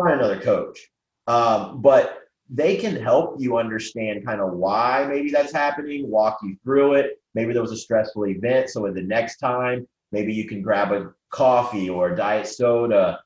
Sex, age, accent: male, 30-49, American